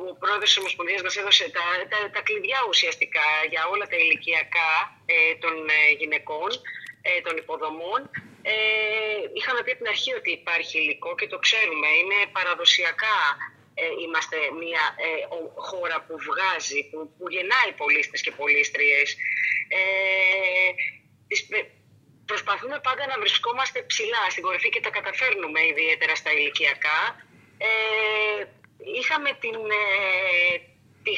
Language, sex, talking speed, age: Greek, female, 125 wpm, 30-49